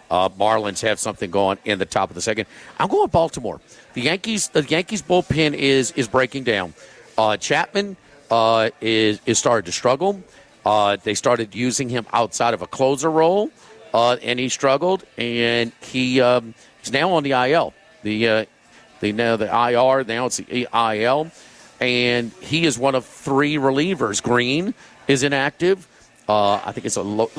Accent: American